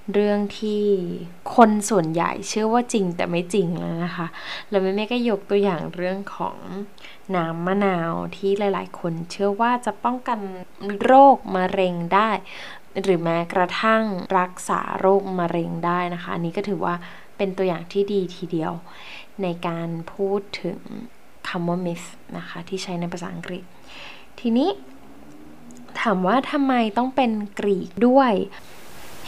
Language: Thai